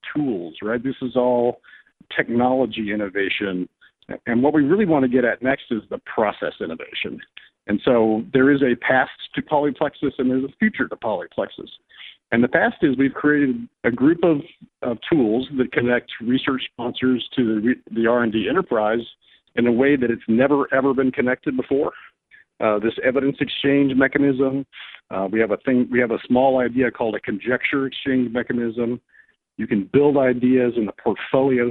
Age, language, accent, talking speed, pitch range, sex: 50-69, English, American, 170 wpm, 115-135 Hz, male